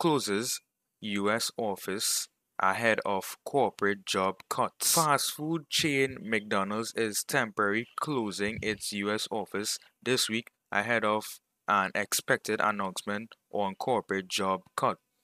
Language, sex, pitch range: English, male, 100-125 Hz